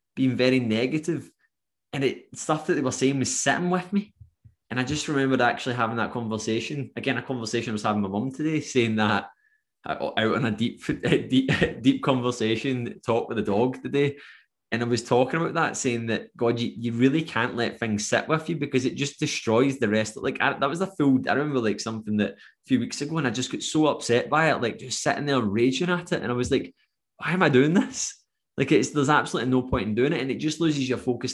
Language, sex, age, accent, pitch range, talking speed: English, male, 20-39, British, 110-140 Hz, 235 wpm